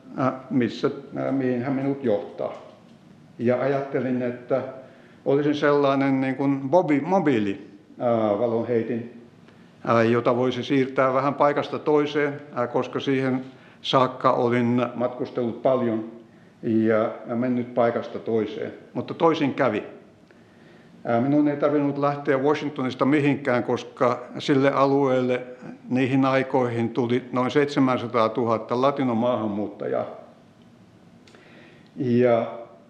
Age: 60-79